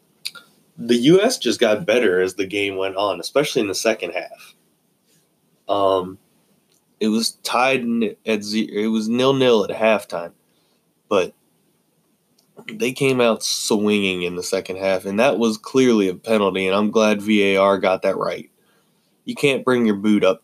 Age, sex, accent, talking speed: 20-39, male, American, 155 wpm